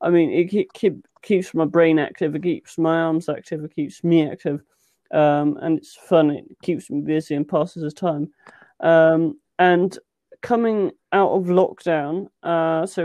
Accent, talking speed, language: British, 165 wpm, English